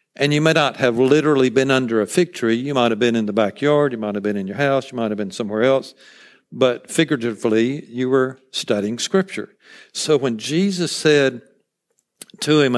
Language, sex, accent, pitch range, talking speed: English, male, American, 115-140 Hz, 200 wpm